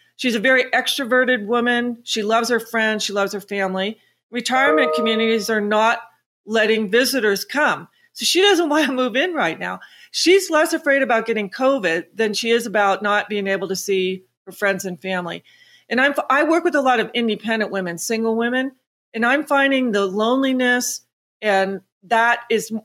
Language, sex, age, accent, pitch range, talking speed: English, female, 40-59, American, 200-255 Hz, 175 wpm